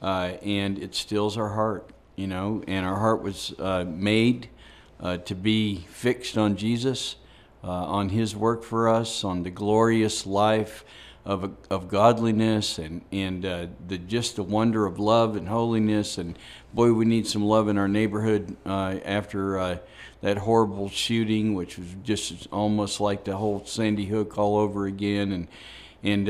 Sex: male